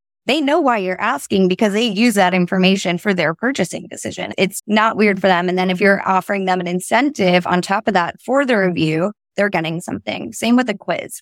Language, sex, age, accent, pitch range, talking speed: English, female, 20-39, American, 165-210 Hz, 220 wpm